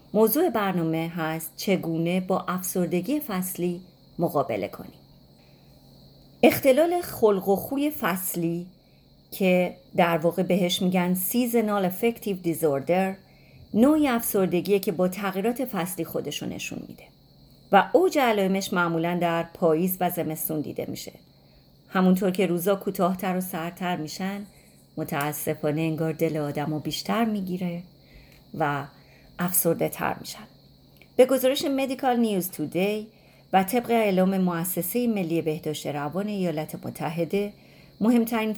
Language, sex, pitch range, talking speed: Persian, female, 165-210 Hz, 115 wpm